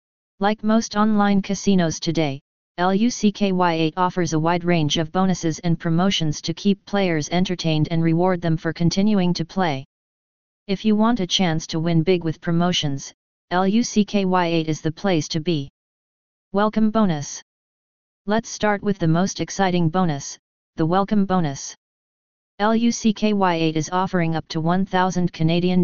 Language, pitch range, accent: English, 165-200 Hz, American